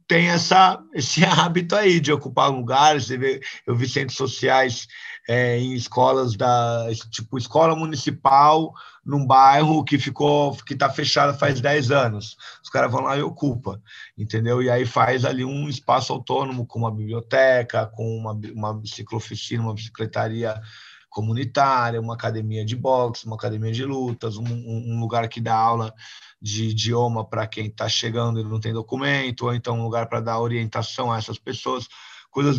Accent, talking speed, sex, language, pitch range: Brazilian, 160 wpm, male, Portuguese, 115-140 Hz